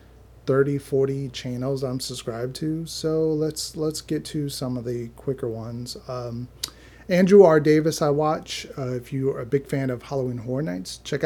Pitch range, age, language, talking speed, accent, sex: 125-160 Hz, 30-49, English, 180 wpm, American, male